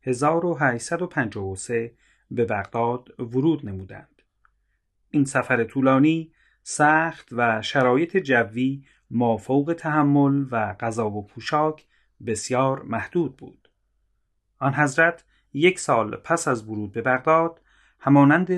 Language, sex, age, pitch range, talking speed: Persian, male, 30-49, 115-150 Hz, 105 wpm